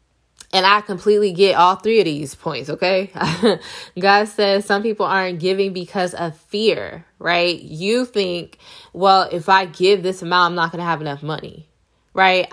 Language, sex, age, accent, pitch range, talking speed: English, female, 10-29, American, 165-200 Hz, 170 wpm